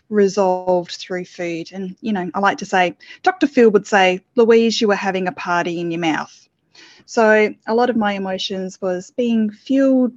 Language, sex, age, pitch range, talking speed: English, female, 20-39, 190-235 Hz, 190 wpm